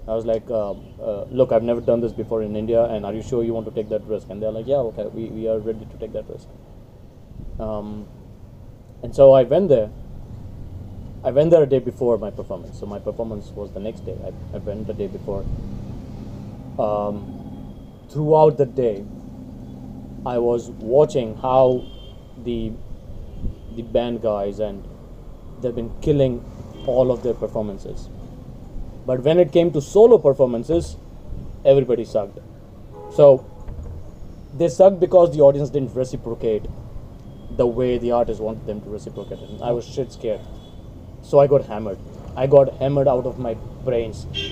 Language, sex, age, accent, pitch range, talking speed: Gujarati, male, 20-39, native, 105-130 Hz, 170 wpm